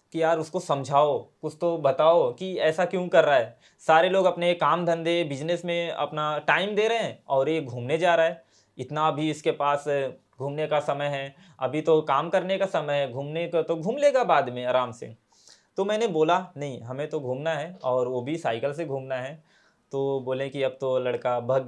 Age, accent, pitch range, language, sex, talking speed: 20-39, native, 140-175 Hz, Hindi, male, 215 wpm